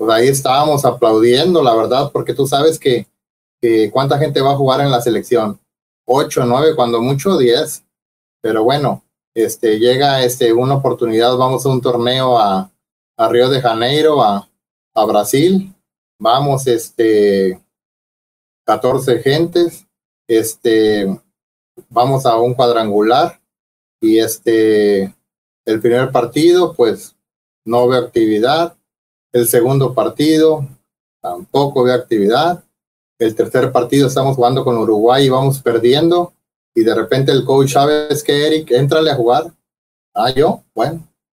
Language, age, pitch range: Spanish, 30-49, 115-150 Hz